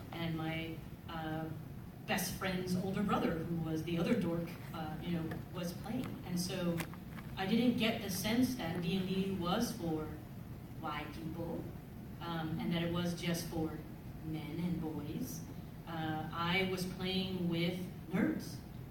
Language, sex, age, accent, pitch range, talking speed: English, female, 30-49, American, 160-185 Hz, 150 wpm